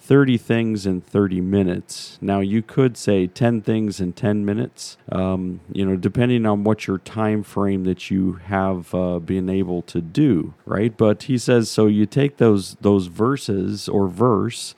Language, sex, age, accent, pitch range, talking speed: English, male, 40-59, American, 95-115 Hz, 175 wpm